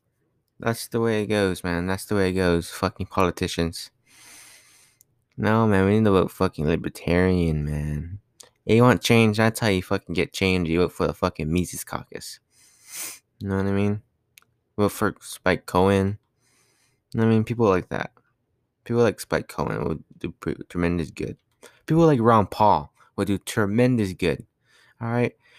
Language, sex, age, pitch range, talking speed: English, male, 20-39, 90-120 Hz, 170 wpm